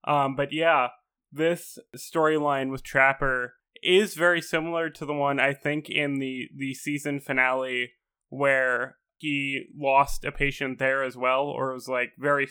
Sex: male